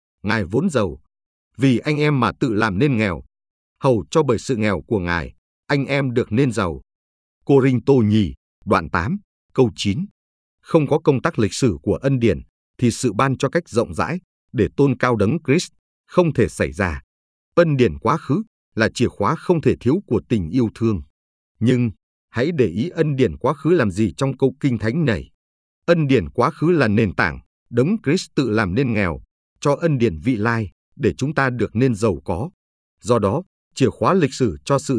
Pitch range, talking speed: 95-135 Hz, 200 wpm